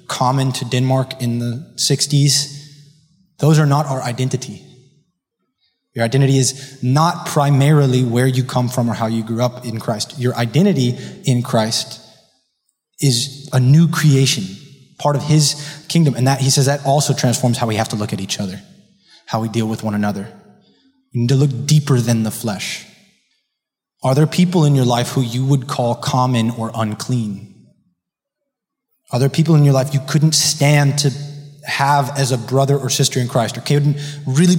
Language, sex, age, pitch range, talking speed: English, male, 20-39, 120-150 Hz, 175 wpm